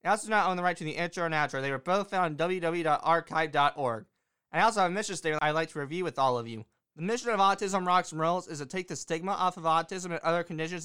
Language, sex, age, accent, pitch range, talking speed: English, male, 20-39, American, 140-180 Hz, 275 wpm